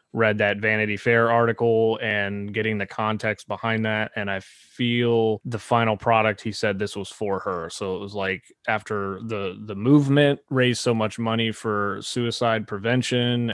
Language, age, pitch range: English, 30-49, 105-135 Hz